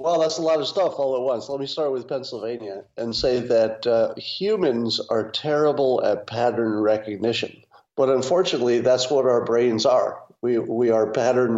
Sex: male